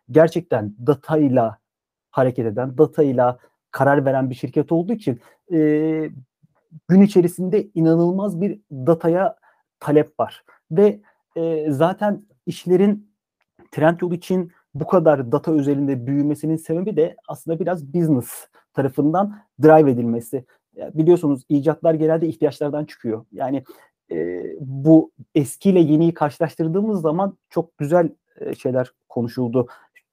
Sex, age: male, 40-59